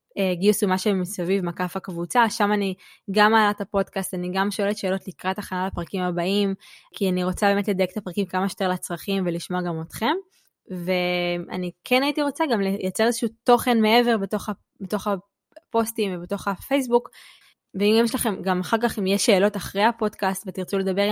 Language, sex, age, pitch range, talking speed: Hebrew, female, 20-39, 185-220 Hz, 165 wpm